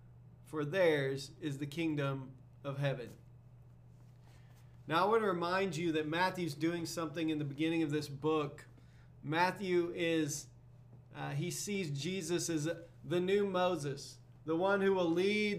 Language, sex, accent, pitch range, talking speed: English, male, American, 150-185 Hz, 145 wpm